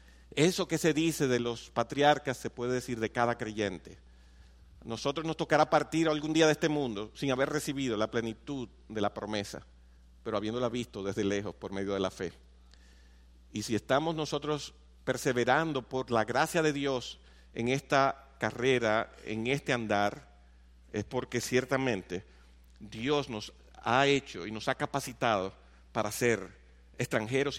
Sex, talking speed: male, 150 wpm